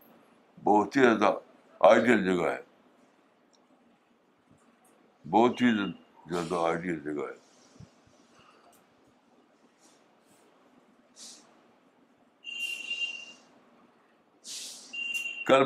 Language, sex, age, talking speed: Urdu, male, 60-79, 55 wpm